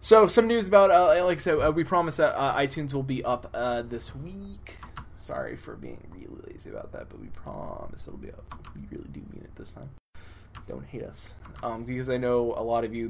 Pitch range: 100-135 Hz